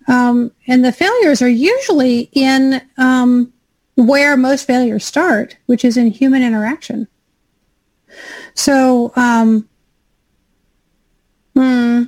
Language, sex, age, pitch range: English, female, 40-59, 235-270 Hz